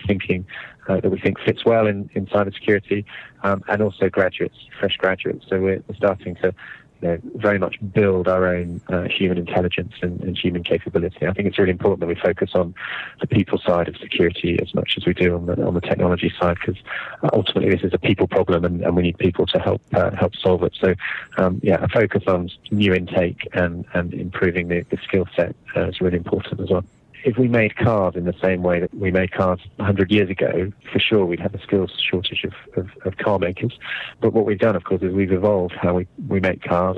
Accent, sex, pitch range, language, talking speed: British, male, 90-100 Hz, English, 215 wpm